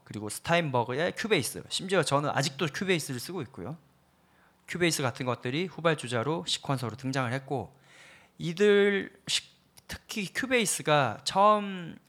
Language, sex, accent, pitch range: Korean, male, native, 125-175 Hz